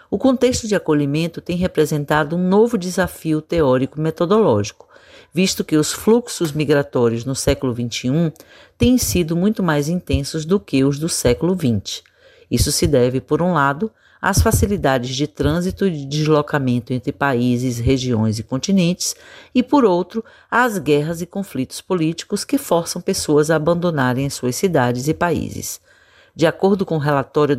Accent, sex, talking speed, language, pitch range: Brazilian, female, 150 wpm, Portuguese, 135-180 Hz